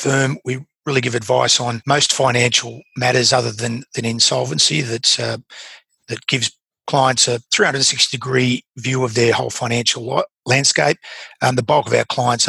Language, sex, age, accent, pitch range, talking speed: English, male, 40-59, Australian, 115-130 Hz, 155 wpm